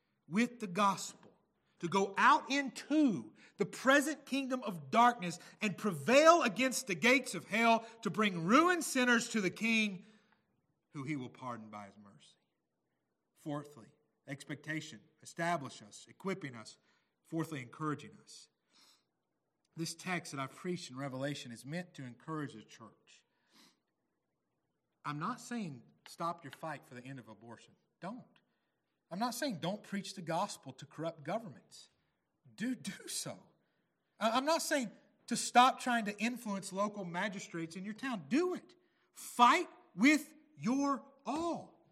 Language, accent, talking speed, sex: English, American, 140 wpm, male